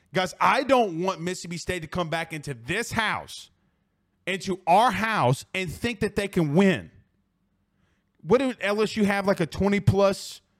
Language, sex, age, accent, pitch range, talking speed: English, male, 30-49, American, 145-215 Hz, 160 wpm